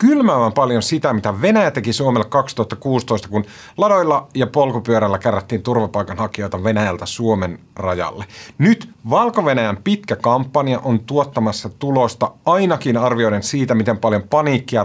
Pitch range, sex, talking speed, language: 110-145 Hz, male, 120 wpm, Finnish